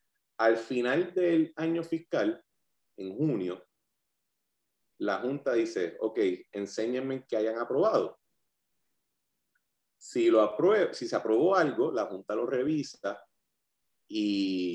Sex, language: male, Spanish